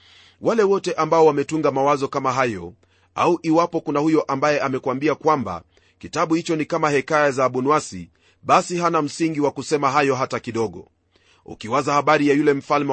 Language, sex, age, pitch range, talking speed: Swahili, male, 30-49, 115-160 Hz, 160 wpm